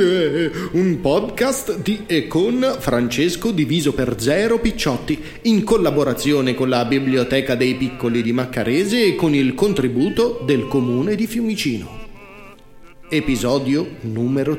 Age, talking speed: 40-59, 120 wpm